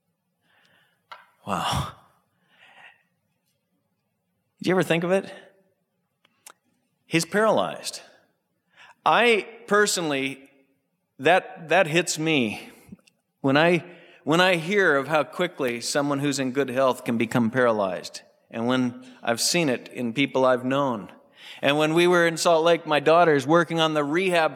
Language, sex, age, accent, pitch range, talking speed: English, male, 40-59, American, 125-170 Hz, 130 wpm